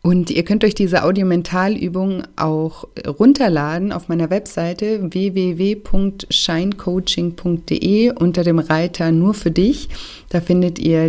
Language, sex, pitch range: German, female, 165-190 Hz